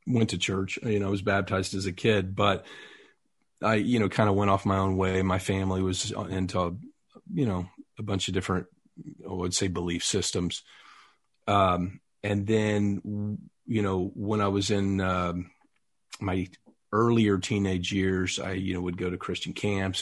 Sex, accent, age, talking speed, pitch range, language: male, American, 40-59, 175 wpm, 95-105 Hz, English